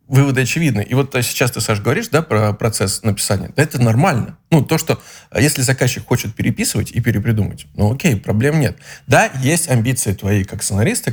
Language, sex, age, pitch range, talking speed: Russian, male, 20-39, 105-140 Hz, 180 wpm